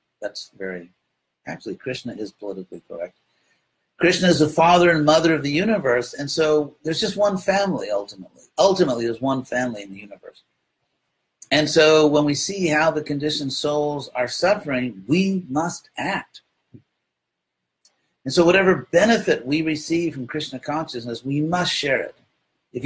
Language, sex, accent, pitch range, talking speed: English, male, American, 130-175 Hz, 150 wpm